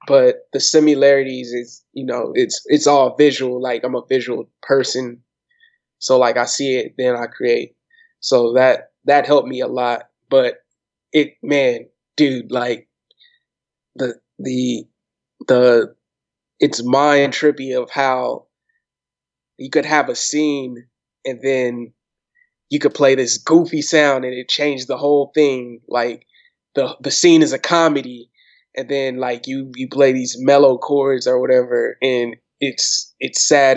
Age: 20-39